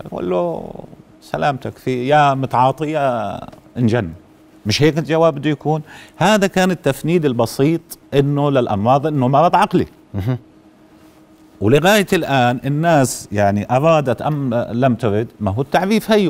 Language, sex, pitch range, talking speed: Arabic, male, 115-155 Hz, 120 wpm